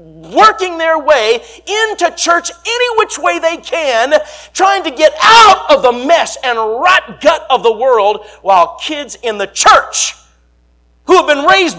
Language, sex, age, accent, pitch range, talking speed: English, male, 40-59, American, 175-270 Hz, 165 wpm